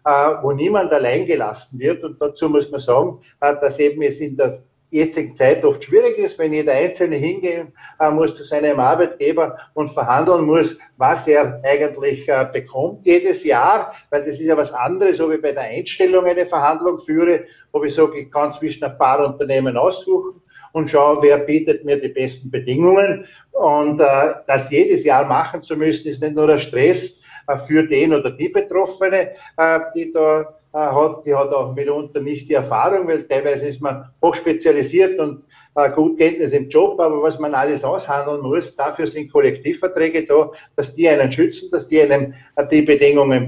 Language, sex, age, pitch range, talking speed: German, male, 50-69, 145-185 Hz, 175 wpm